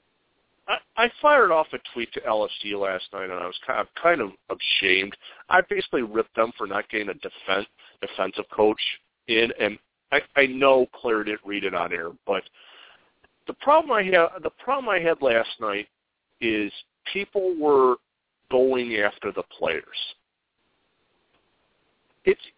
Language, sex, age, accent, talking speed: English, male, 50-69, American, 160 wpm